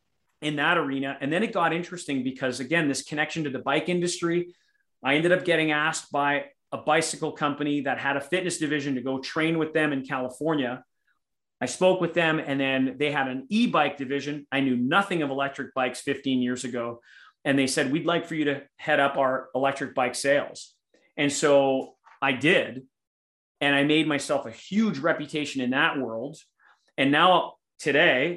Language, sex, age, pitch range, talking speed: English, male, 30-49, 135-170 Hz, 185 wpm